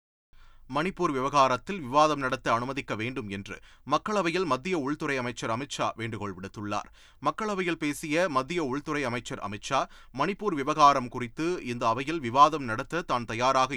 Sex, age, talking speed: male, 30-49, 125 wpm